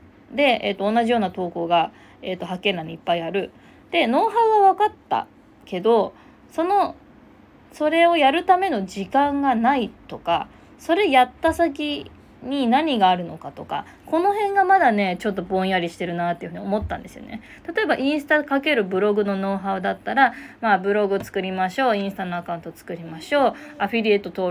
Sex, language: female, Japanese